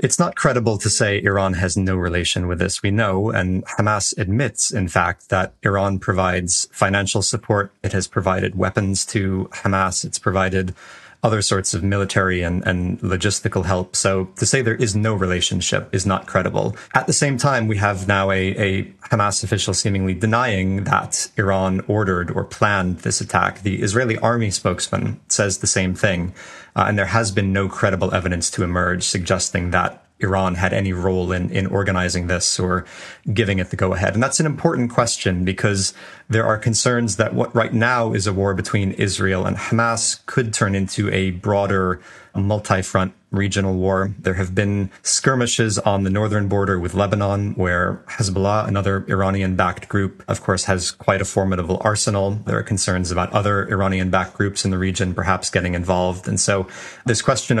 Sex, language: male, English